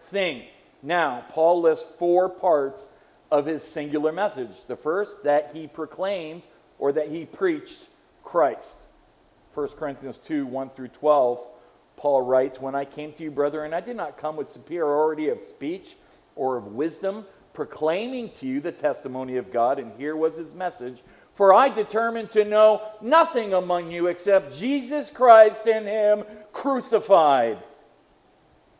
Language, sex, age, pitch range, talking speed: English, male, 50-69, 140-190 Hz, 145 wpm